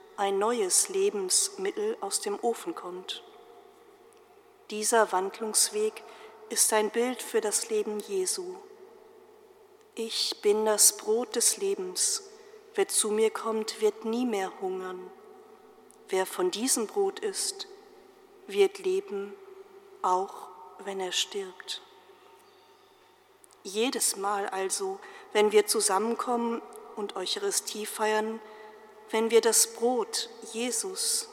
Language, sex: German, female